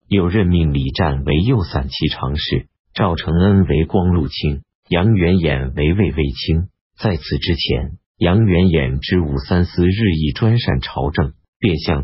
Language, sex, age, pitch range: Chinese, male, 50-69, 75-95 Hz